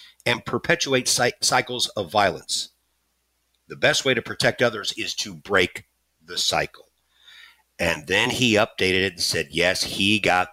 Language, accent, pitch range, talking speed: English, American, 95-145 Hz, 150 wpm